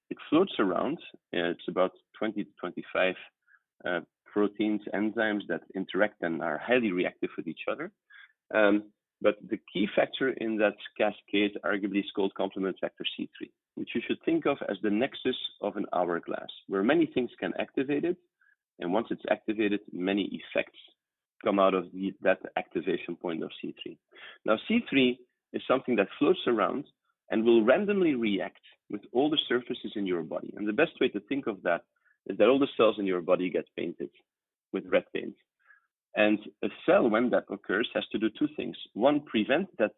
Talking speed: 175 wpm